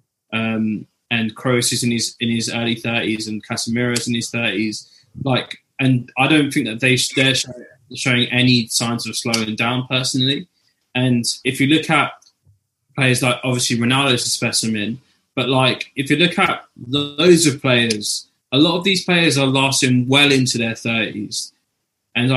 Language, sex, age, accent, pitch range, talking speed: English, male, 20-39, British, 120-135 Hz, 175 wpm